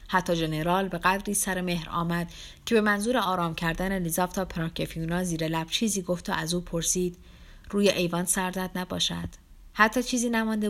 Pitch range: 170-200 Hz